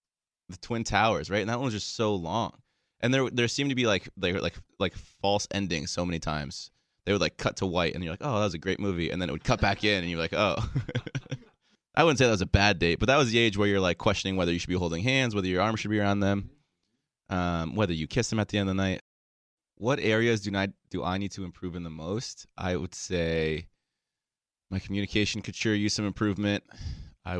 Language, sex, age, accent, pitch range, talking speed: English, male, 20-39, American, 85-110 Hz, 255 wpm